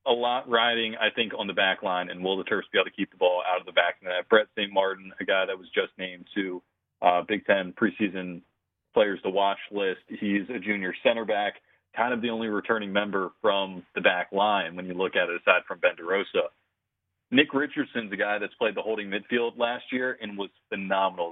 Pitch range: 95-115 Hz